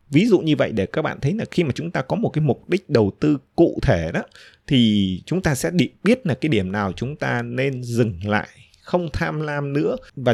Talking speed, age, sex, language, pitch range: 245 wpm, 20-39, male, Vietnamese, 110-150 Hz